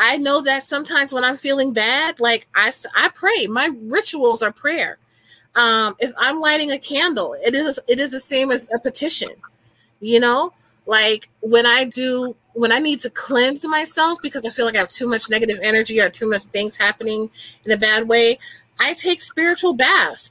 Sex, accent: female, American